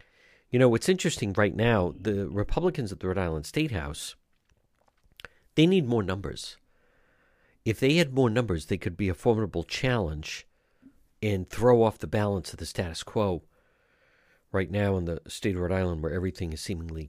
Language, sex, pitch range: English, male, 90-130 Hz